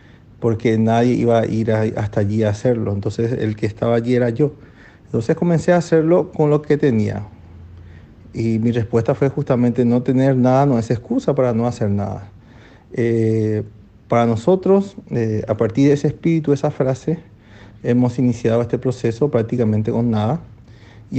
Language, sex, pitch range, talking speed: Spanish, male, 110-130 Hz, 165 wpm